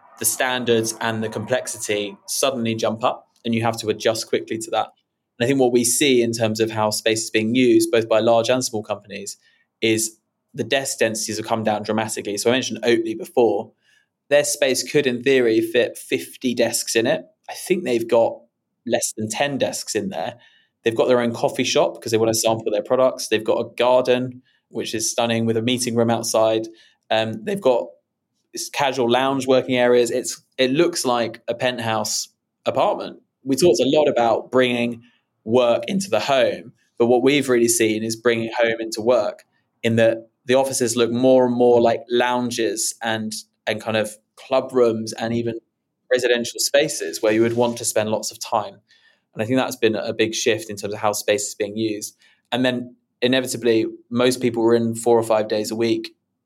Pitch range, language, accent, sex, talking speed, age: 110-125 Hz, English, British, male, 200 wpm, 20-39